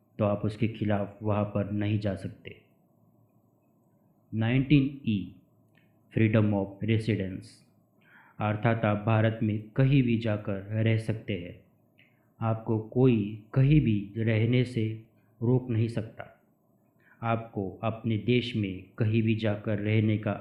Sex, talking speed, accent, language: male, 125 wpm, native, Hindi